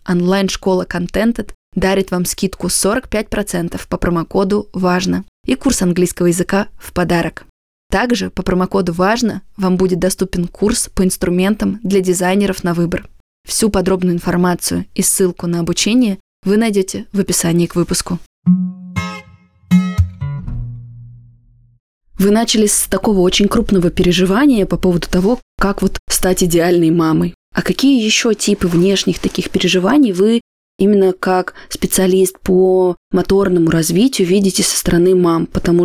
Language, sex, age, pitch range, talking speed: Russian, female, 20-39, 175-195 Hz, 125 wpm